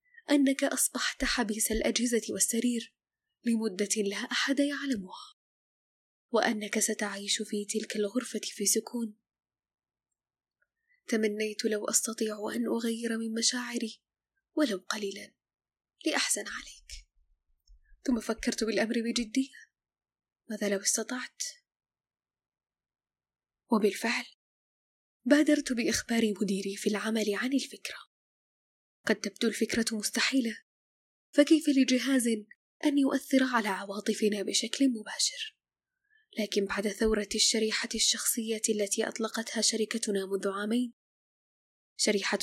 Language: Arabic